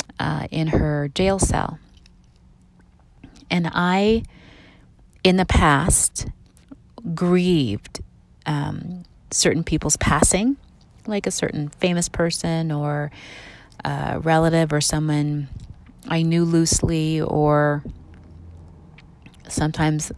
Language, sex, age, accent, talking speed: English, female, 30-49, American, 90 wpm